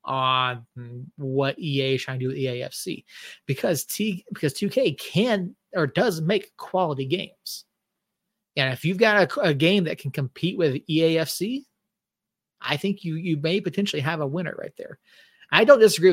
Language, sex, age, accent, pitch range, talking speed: English, male, 30-49, American, 135-180 Hz, 165 wpm